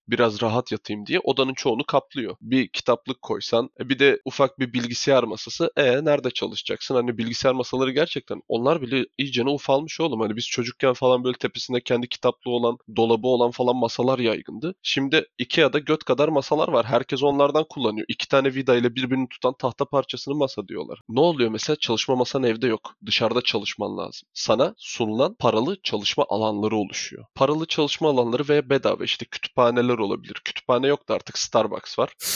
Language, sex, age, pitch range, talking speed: Turkish, male, 20-39, 120-155 Hz, 170 wpm